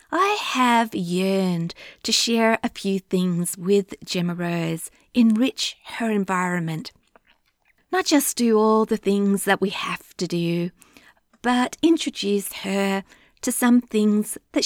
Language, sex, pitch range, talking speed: English, female, 185-240 Hz, 130 wpm